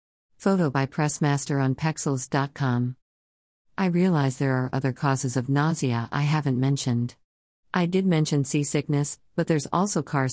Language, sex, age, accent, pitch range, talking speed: English, female, 50-69, American, 130-165 Hz, 140 wpm